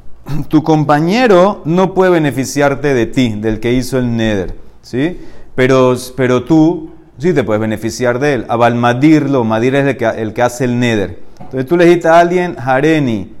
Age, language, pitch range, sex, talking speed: 30-49, Spanish, 125-160 Hz, male, 175 wpm